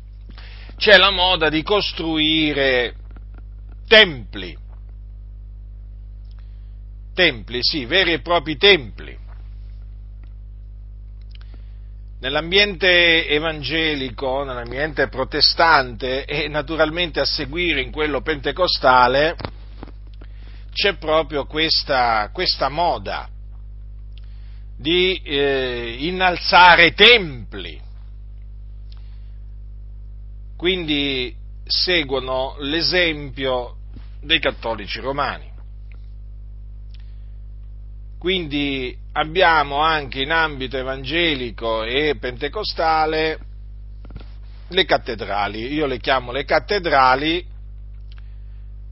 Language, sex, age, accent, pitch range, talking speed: Italian, male, 50-69, native, 100-155 Hz, 65 wpm